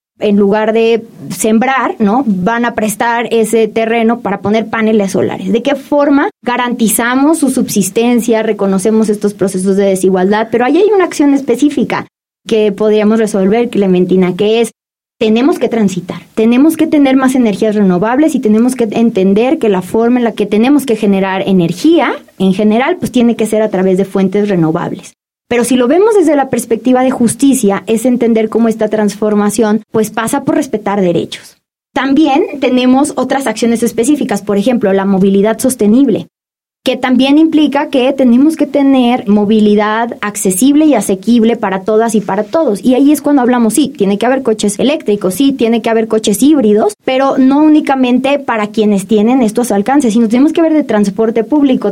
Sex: female